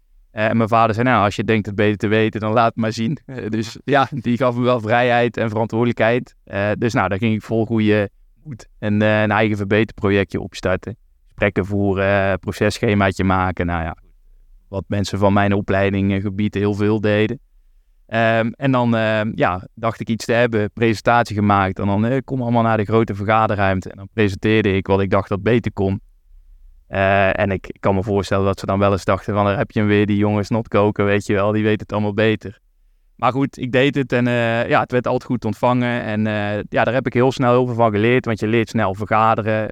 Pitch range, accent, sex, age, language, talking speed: 100-115 Hz, Dutch, male, 20-39, Dutch, 235 wpm